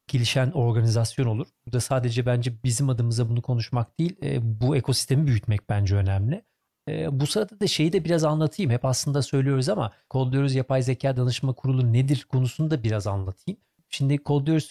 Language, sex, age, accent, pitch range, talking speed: Turkish, male, 40-59, native, 125-145 Hz, 170 wpm